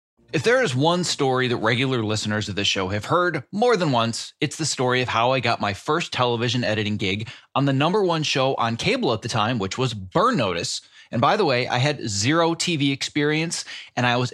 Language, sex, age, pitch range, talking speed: English, male, 30-49, 110-150 Hz, 225 wpm